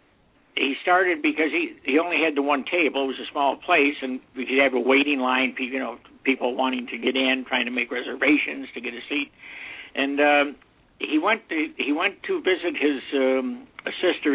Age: 60-79